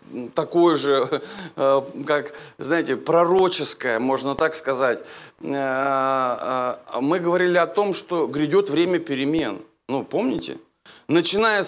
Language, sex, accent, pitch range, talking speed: Russian, male, native, 160-215 Hz, 100 wpm